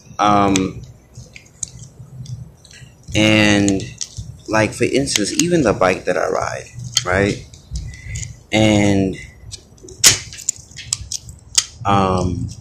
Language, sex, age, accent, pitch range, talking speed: English, male, 30-49, American, 95-120 Hz, 65 wpm